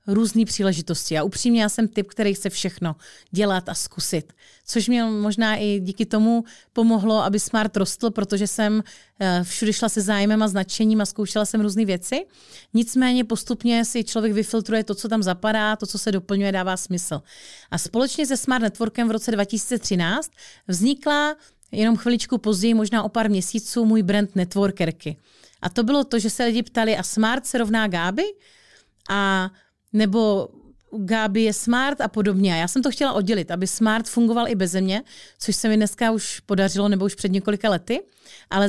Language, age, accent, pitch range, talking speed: Czech, 30-49, native, 200-235 Hz, 175 wpm